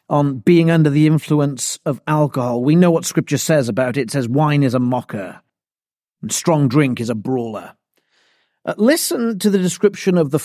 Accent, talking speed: British, 190 wpm